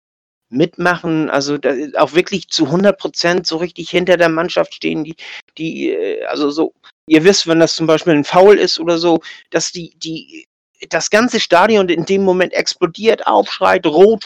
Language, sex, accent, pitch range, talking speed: German, male, German, 150-185 Hz, 170 wpm